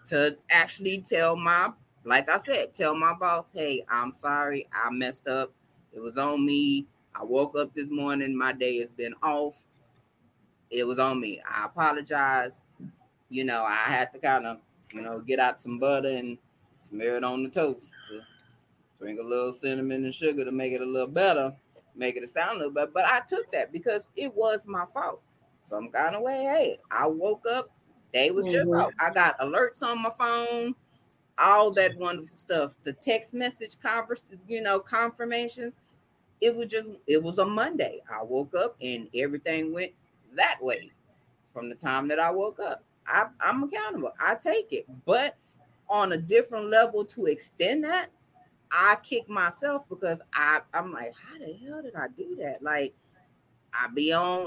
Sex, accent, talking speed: female, American, 180 wpm